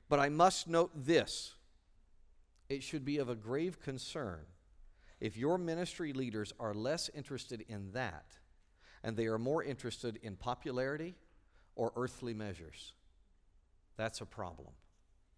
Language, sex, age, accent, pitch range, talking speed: English, male, 50-69, American, 100-155 Hz, 135 wpm